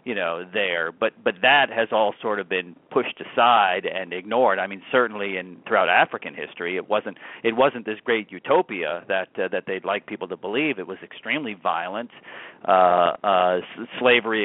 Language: English